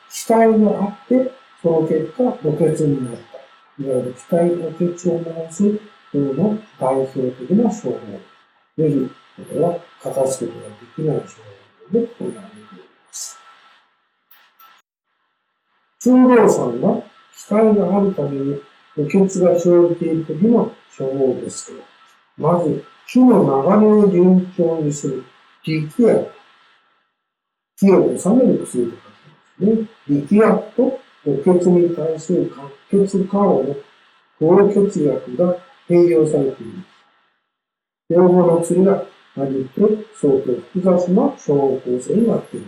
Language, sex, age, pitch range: Japanese, male, 60-79, 145-205 Hz